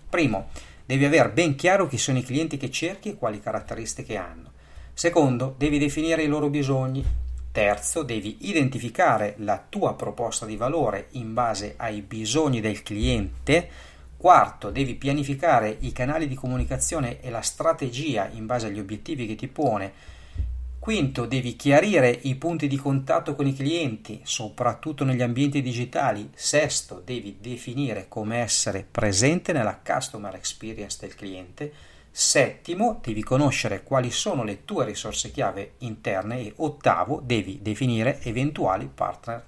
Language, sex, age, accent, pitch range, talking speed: Italian, male, 40-59, native, 110-145 Hz, 140 wpm